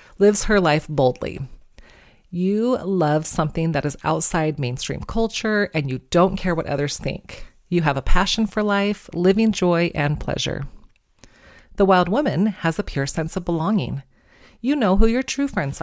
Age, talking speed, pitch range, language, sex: 30-49, 165 wpm, 150-205 Hz, English, female